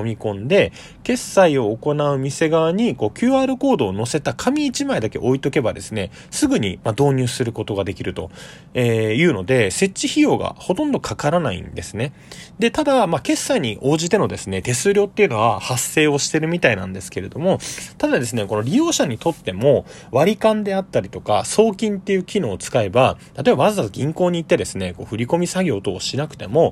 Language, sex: Japanese, male